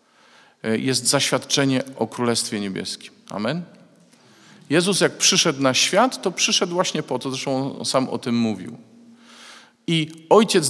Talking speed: 135 wpm